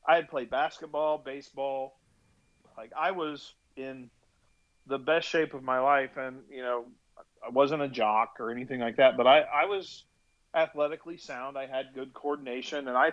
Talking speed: 175 wpm